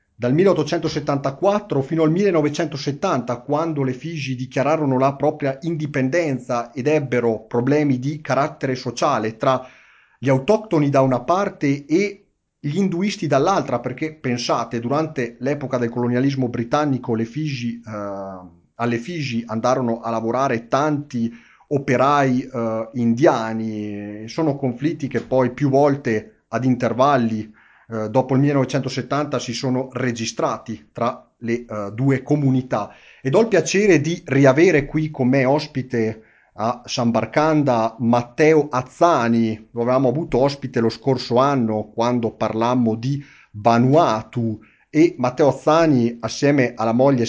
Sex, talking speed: male, 125 wpm